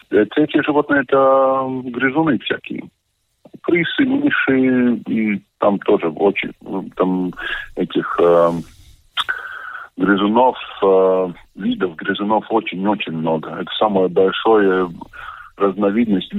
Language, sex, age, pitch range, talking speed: Russian, male, 20-39, 95-120 Hz, 90 wpm